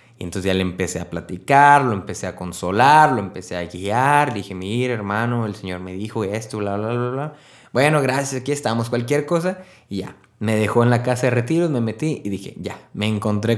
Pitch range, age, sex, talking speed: 105-135 Hz, 20-39, male, 215 wpm